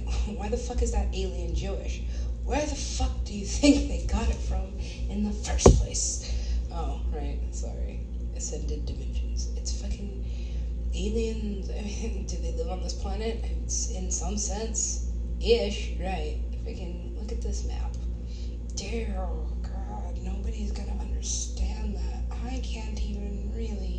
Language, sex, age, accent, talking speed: English, female, 20-39, American, 155 wpm